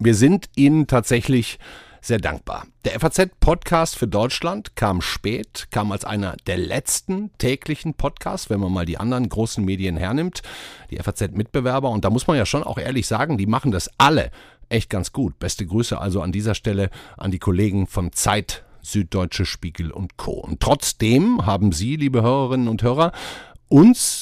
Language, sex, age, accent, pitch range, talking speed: German, male, 50-69, German, 100-130 Hz, 170 wpm